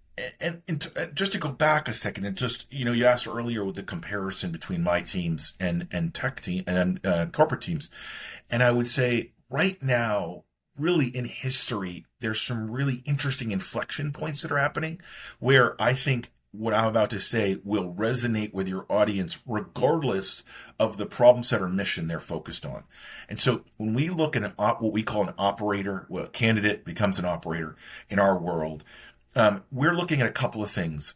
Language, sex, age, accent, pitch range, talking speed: English, male, 40-59, American, 95-135 Hz, 195 wpm